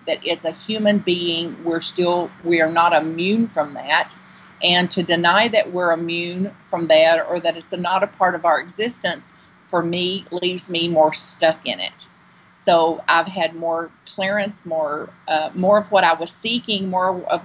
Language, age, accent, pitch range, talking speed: English, 50-69, American, 160-185 Hz, 180 wpm